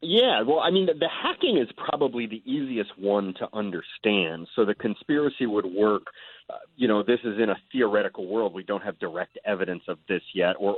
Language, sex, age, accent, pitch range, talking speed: English, male, 40-59, American, 95-120 Hz, 205 wpm